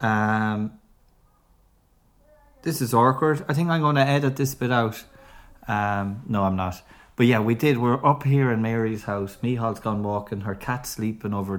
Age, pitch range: 30-49, 105-135 Hz